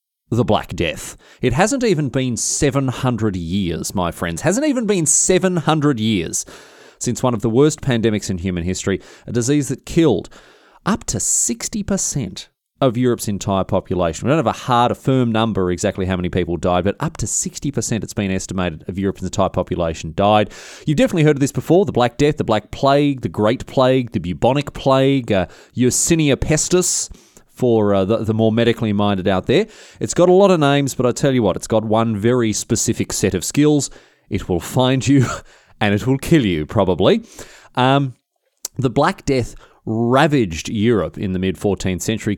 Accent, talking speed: Australian, 185 wpm